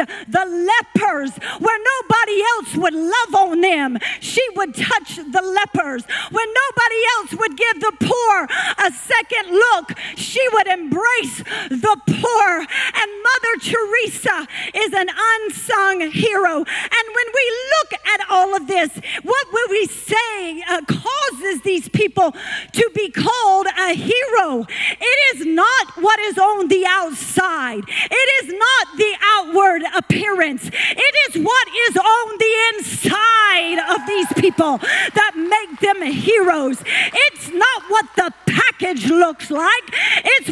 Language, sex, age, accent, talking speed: English, female, 40-59, American, 140 wpm